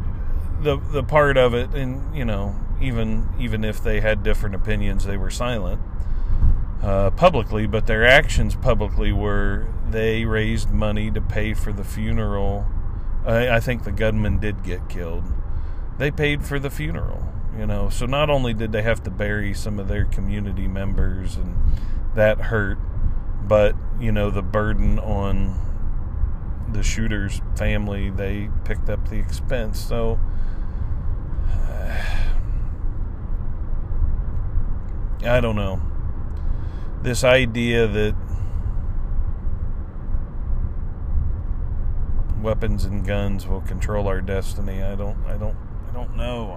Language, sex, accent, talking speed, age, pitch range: English, male, American, 125 wpm, 40-59, 90-110 Hz